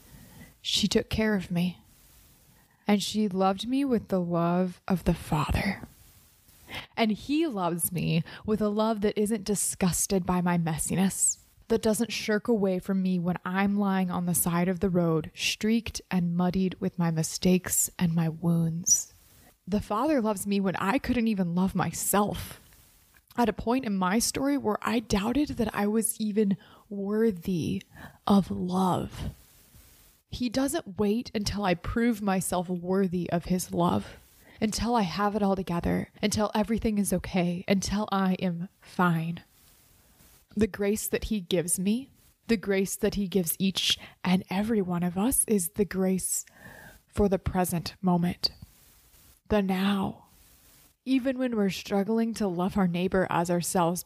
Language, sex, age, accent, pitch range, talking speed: English, female, 20-39, American, 180-215 Hz, 155 wpm